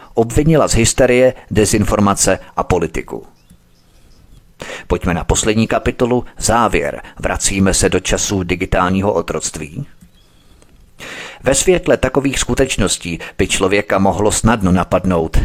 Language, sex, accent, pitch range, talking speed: Czech, male, native, 90-115 Hz, 100 wpm